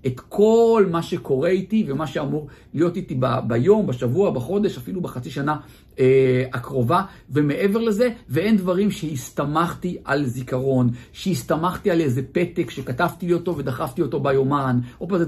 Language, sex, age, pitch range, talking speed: Hebrew, male, 50-69, 135-190 Hz, 140 wpm